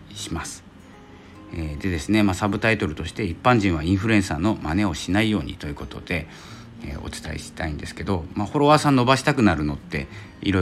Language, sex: Japanese, male